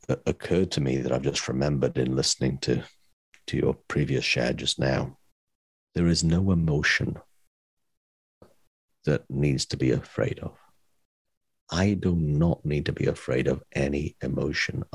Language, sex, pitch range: English, male, 70-85 Hz